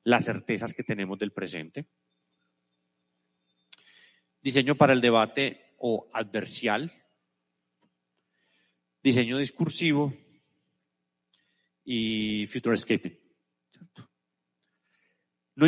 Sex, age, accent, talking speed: male, 40-59, Colombian, 70 wpm